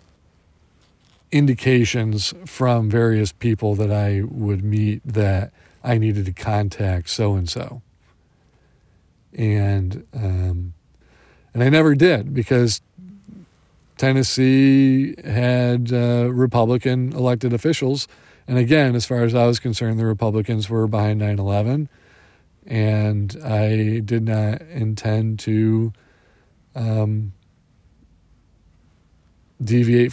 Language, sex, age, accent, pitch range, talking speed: English, male, 40-59, American, 100-125 Hz, 95 wpm